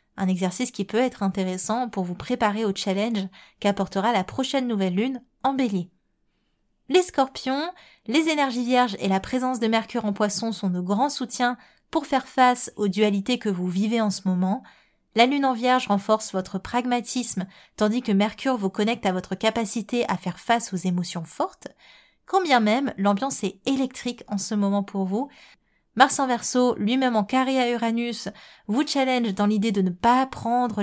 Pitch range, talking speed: 195-245 Hz, 180 wpm